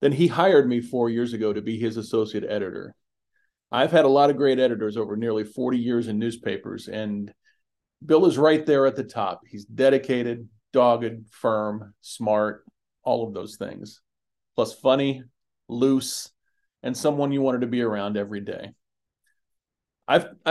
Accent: American